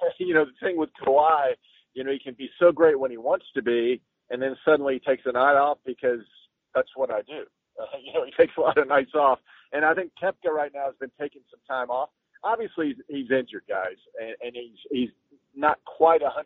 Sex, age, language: male, 50-69, English